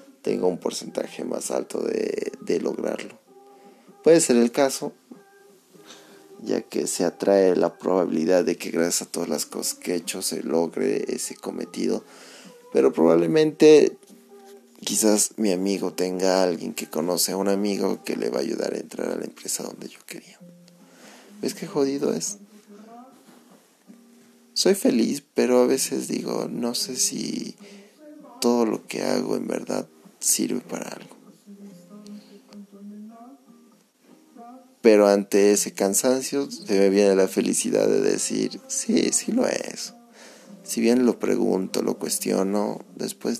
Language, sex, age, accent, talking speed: Spanish, male, 30-49, Mexican, 140 wpm